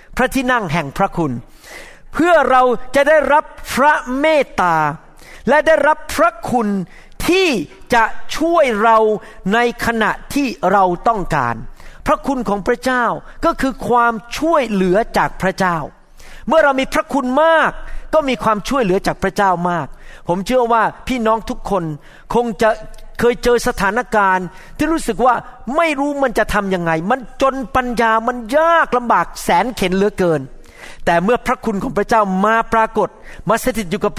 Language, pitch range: Thai, 195-255 Hz